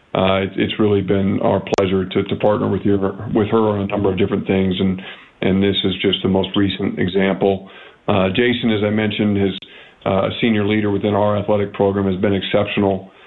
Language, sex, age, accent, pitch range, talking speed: English, male, 50-69, American, 100-105 Hz, 200 wpm